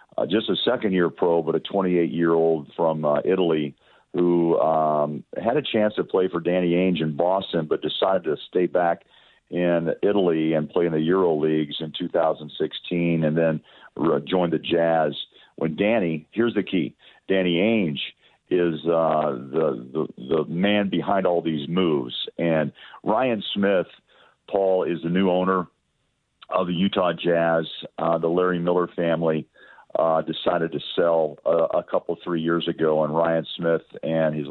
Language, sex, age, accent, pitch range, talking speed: English, male, 50-69, American, 80-90 Hz, 160 wpm